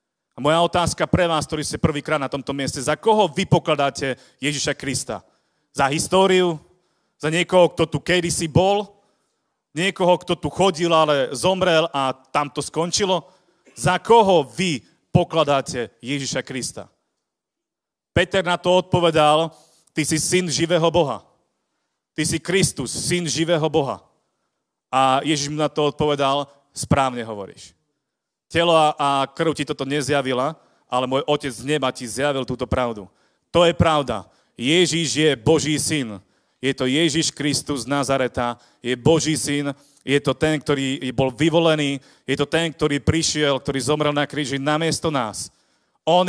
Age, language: 40-59, Slovak